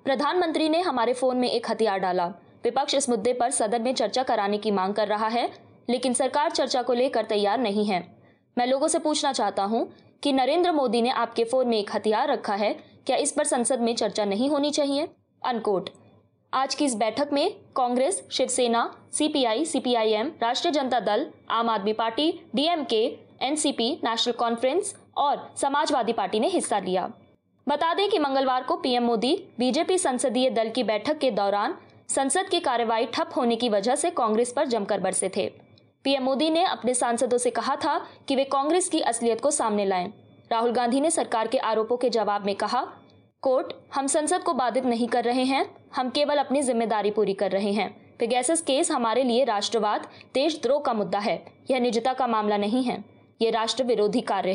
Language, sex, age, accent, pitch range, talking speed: Hindi, female, 20-39, native, 225-285 Hz, 185 wpm